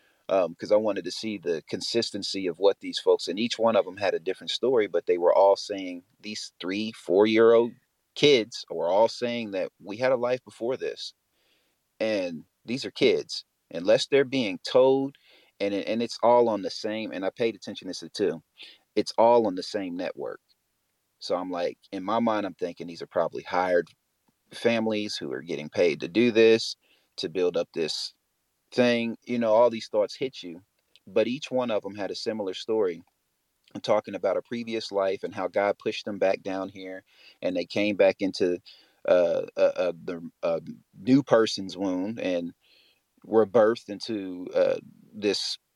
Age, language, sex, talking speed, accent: 30-49, English, male, 190 wpm, American